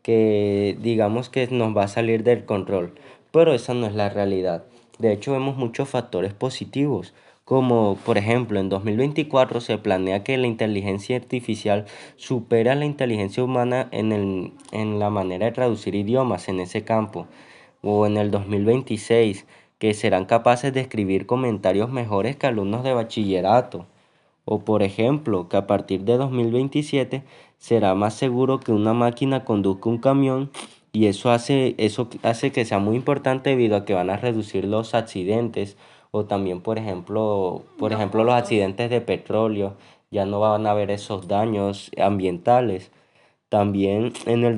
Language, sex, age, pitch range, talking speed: Spanish, male, 20-39, 100-125 Hz, 155 wpm